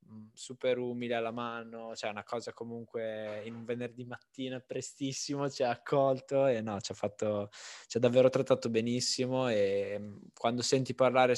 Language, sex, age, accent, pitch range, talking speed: Italian, male, 10-29, native, 110-125 Hz, 160 wpm